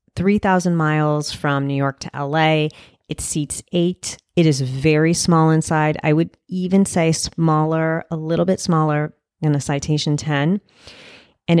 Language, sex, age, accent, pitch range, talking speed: English, female, 30-49, American, 145-165 Hz, 150 wpm